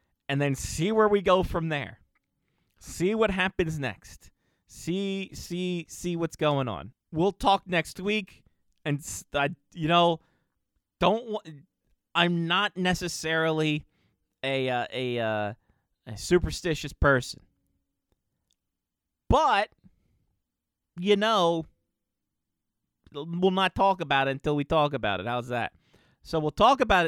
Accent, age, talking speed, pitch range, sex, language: American, 30-49, 125 wpm, 105-165 Hz, male, English